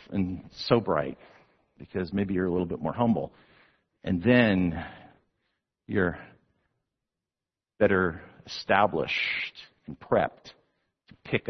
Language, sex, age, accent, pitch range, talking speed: English, male, 50-69, American, 95-145 Hz, 105 wpm